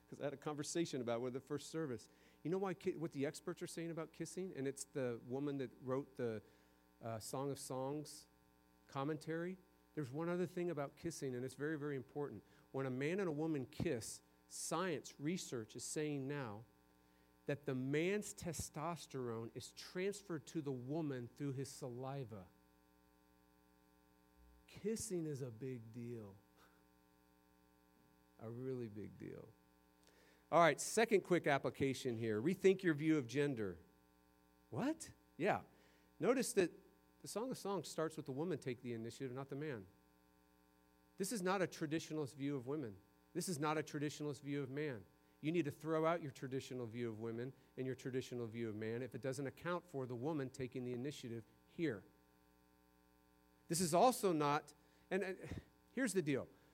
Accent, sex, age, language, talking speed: American, male, 50-69, English, 165 wpm